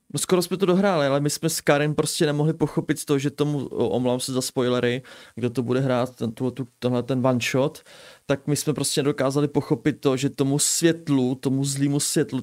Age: 30-49